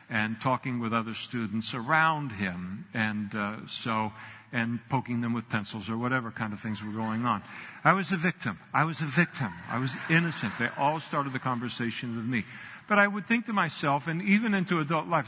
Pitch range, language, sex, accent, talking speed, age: 115-165 Hz, English, male, American, 205 wpm, 50-69